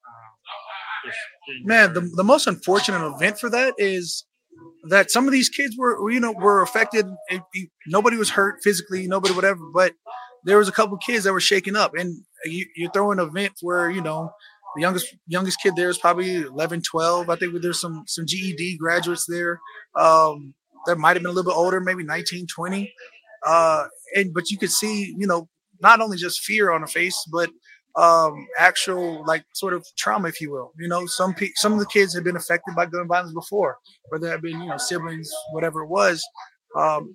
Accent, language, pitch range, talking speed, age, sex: American, English, 170-200 Hz, 200 wpm, 20-39, male